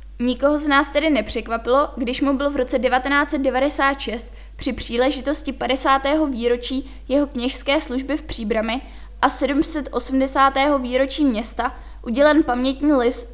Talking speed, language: 120 wpm, Czech